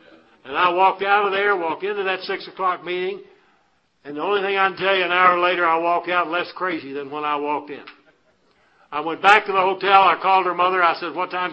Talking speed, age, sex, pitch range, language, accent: 245 wpm, 60-79, male, 150-190 Hz, English, American